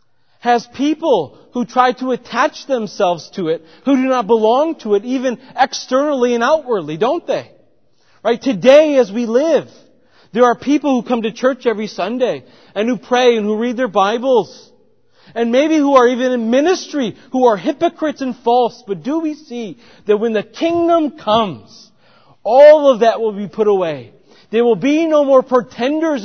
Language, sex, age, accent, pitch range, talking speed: English, male, 40-59, American, 205-270 Hz, 175 wpm